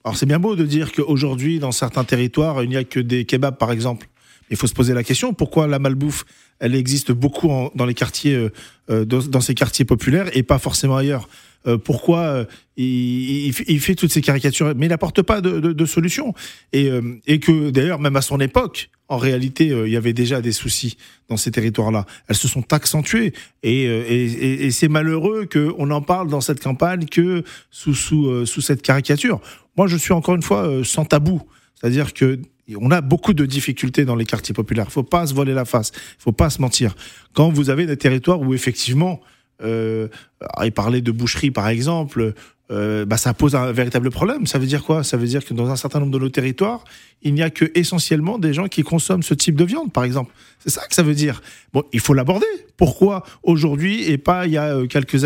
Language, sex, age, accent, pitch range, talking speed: French, male, 40-59, French, 125-160 Hz, 225 wpm